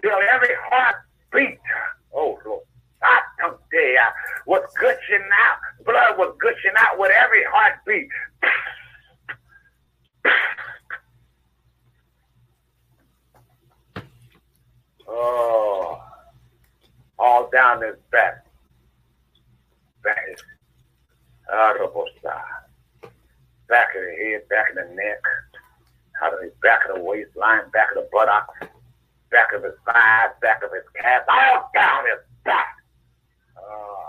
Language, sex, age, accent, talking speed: English, male, 60-79, American, 105 wpm